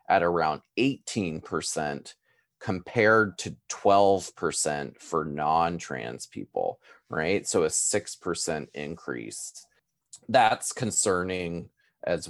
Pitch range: 85-110 Hz